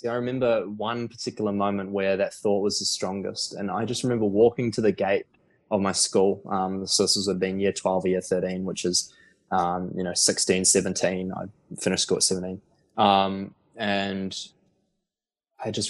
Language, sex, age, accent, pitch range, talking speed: English, male, 20-39, Australian, 95-100 Hz, 180 wpm